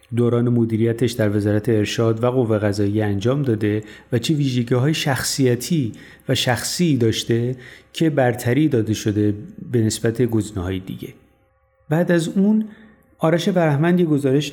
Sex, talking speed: male, 135 wpm